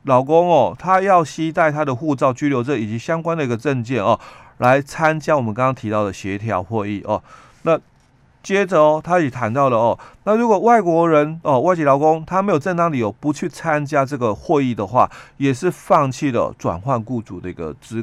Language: Chinese